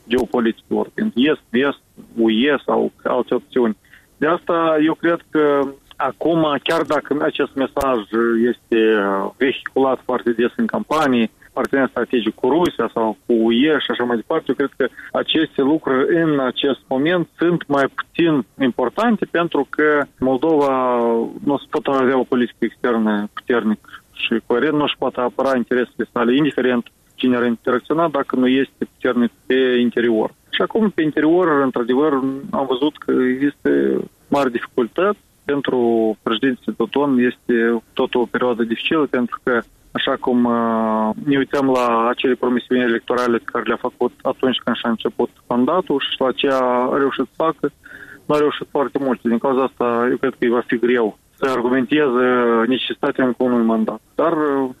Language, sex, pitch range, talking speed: Romanian, male, 120-140 Hz, 150 wpm